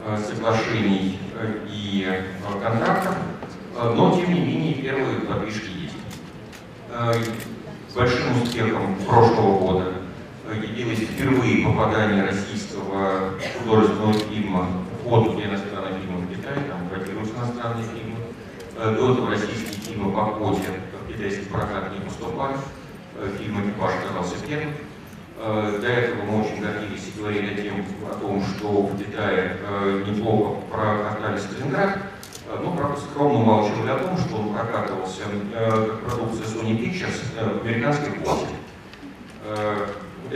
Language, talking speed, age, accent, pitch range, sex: Russian, 115 wpm, 40-59, native, 100-115 Hz, male